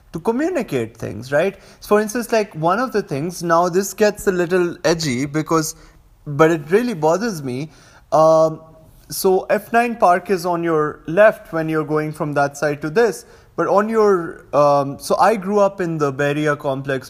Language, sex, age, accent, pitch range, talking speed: English, male, 20-39, Indian, 135-175 Hz, 180 wpm